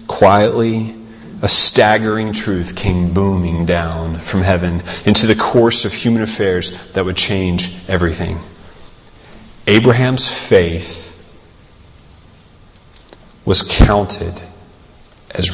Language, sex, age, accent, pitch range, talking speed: English, male, 30-49, American, 90-125 Hz, 95 wpm